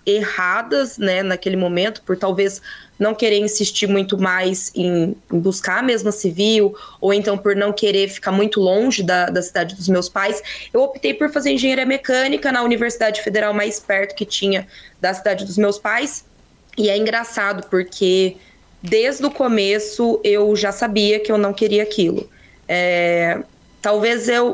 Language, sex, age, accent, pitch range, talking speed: Portuguese, female, 20-39, Brazilian, 195-225 Hz, 160 wpm